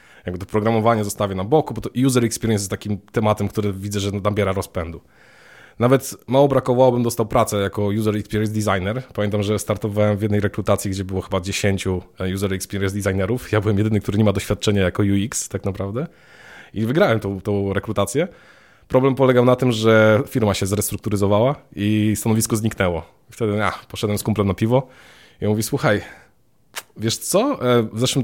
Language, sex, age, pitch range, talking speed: Polish, male, 20-39, 100-115 Hz, 175 wpm